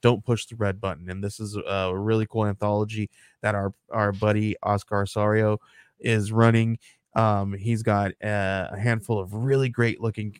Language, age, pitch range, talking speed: English, 20-39, 100-120 Hz, 175 wpm